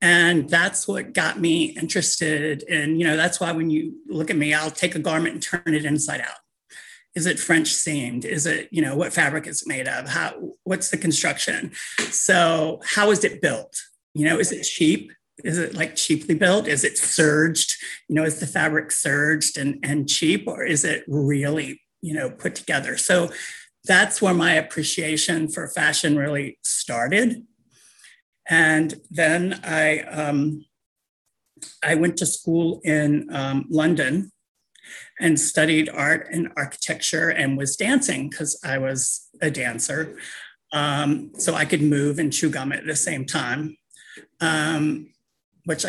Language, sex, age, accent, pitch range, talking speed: English, male, 40-59, American, 150-175 Hz, 165 wpm